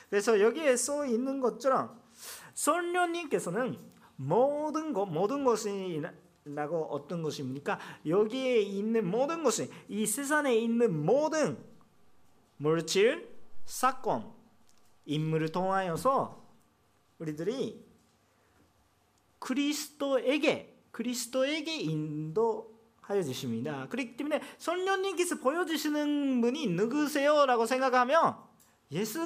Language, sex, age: Korean, male, 40-59